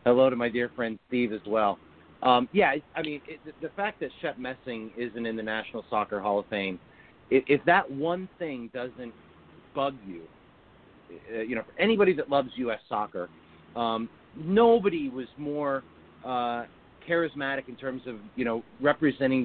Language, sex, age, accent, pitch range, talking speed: English, male, 40-59, American, 115-140 Hz, 160 wpm